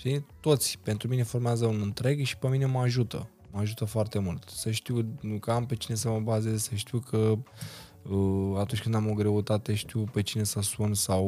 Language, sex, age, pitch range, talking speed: Romanian, male, 20-39, 105-130 Hz, 205 wpm